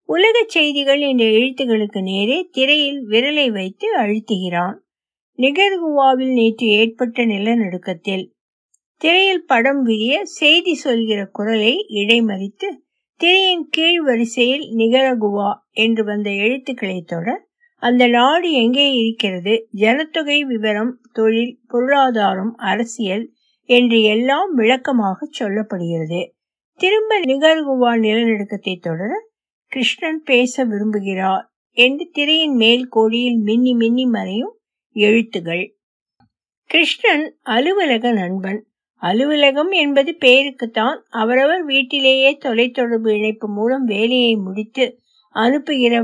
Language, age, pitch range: Tamil, 60-79, 215-280 Hz